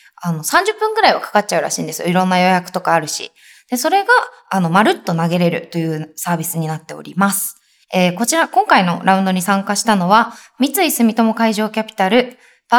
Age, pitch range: 20-39, 185-265 Hz